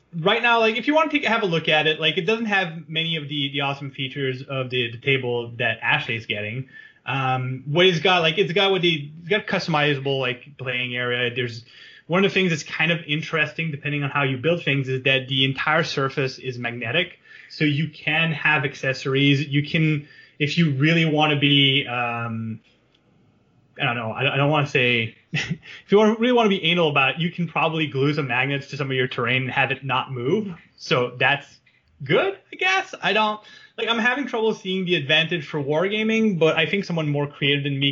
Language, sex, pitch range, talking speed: English, male, 135-175 Hz, 220 wpm